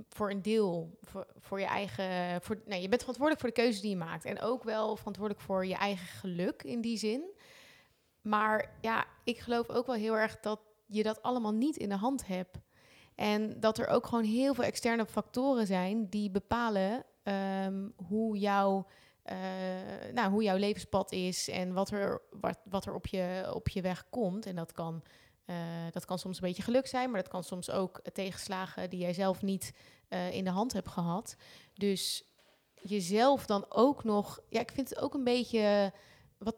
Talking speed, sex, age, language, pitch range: 195 wpm, female, 20-39, Dutch, 190-230 Hz